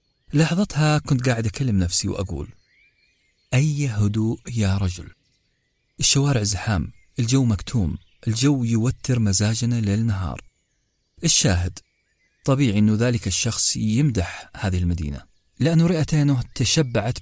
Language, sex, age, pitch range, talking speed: Arabic, male, 40-59, 95-130 Hz, 100 wpm